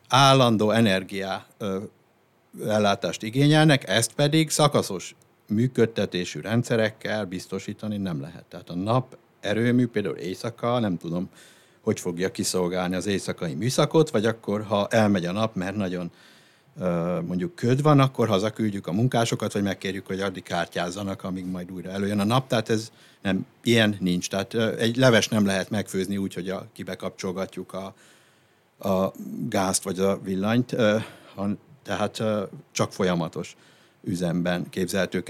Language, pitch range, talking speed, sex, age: Hungarian, 95-120 Hz, 135 wpm, male, 60-79